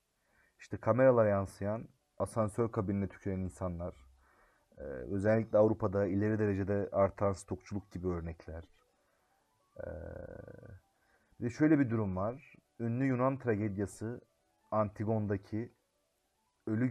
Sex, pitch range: male, 95-110 Hz